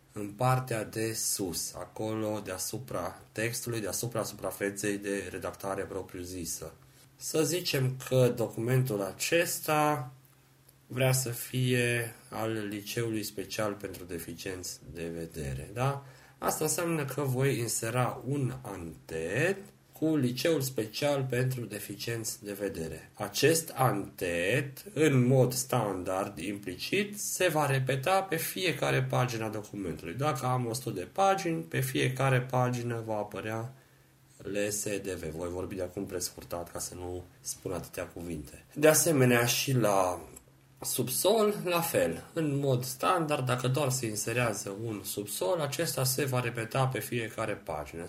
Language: Romanian